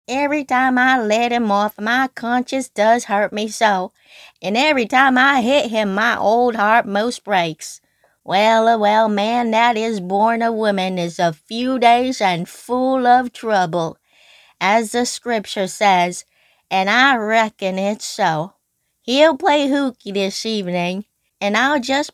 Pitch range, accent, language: 190-255 Hz, American, English